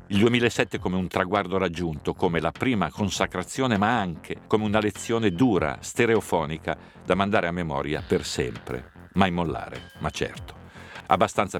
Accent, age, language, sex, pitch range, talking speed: native, 50-69, Italian, male, 85-110 Hz, 145 wpm